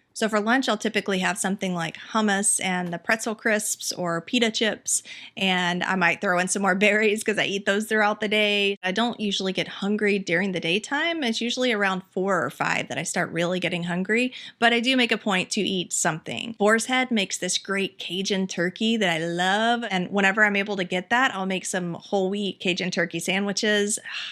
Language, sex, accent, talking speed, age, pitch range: English, female, American, 210 wpm, 30-49, 185-225 Hz